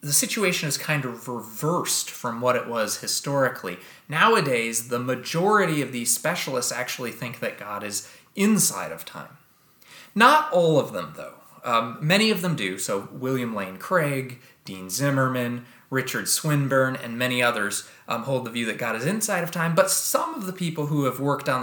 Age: 20-39